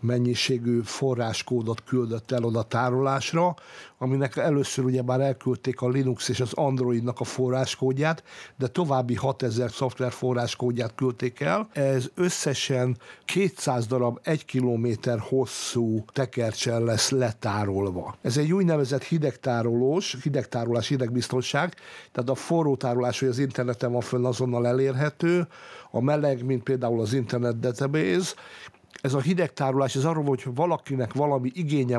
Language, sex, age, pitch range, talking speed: Hungarian, male, 60-79, 120-145 Hz, 125 wpm